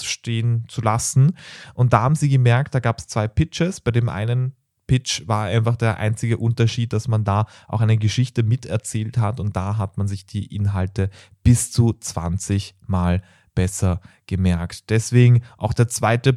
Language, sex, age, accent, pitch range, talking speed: German, male, 30-49, German, 110-135 Hz, 170 wpm